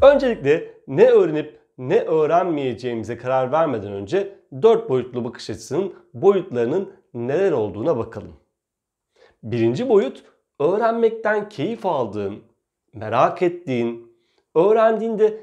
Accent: native